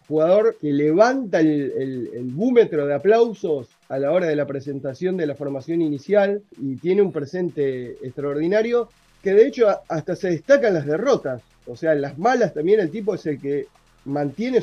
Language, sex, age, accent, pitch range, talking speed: Spanish, male, 30-49, Argentinian, 155-220 Hz, 175 wpm